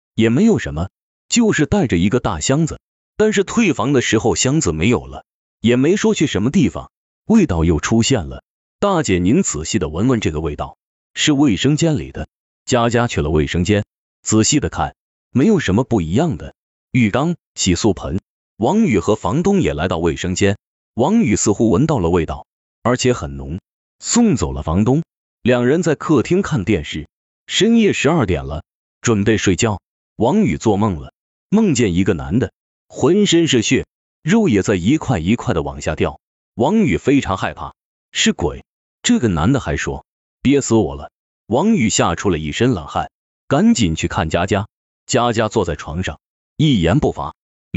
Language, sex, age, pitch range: Chinese, male, 30-49, 85-140 Hz